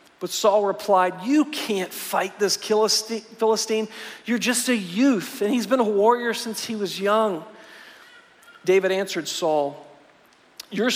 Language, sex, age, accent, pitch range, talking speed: English, male, 40-59, American, 180-215 Hz, 135 wpm